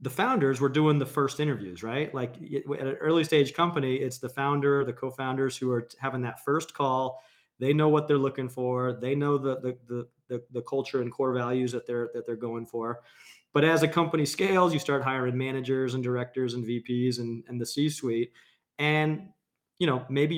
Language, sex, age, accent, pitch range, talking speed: English, male, 30-49, American, 125-145 Hz, 205 wpm